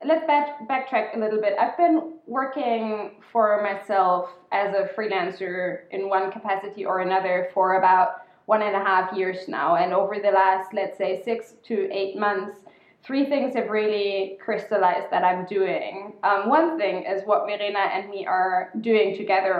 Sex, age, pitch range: female, 20-39, 195-230 Hz